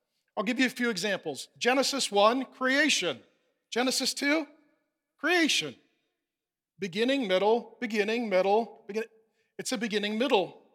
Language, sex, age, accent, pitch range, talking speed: English, male, 40-59, American, 220-290 Hz, 115 wpm